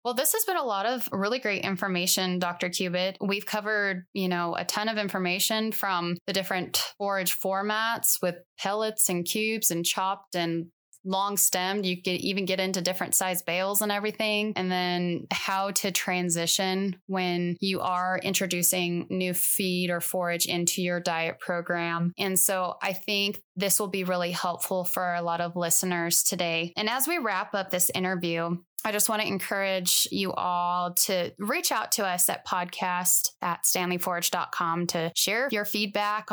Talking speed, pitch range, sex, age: 170 wpm, 175-200 Hz, female, 20-39